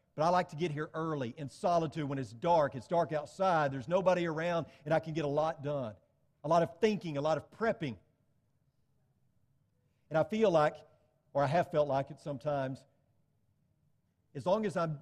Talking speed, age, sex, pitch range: 190 wpm, 40-59, male, 135-190 Hz